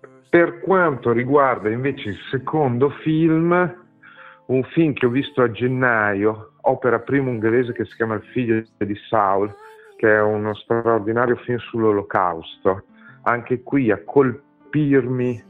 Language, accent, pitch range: Italian, native, 95-120 Hz